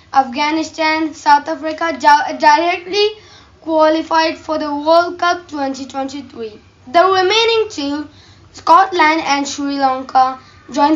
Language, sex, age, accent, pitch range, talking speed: English, female, 20-39, Indian, 270-335 Hz, 100 wpm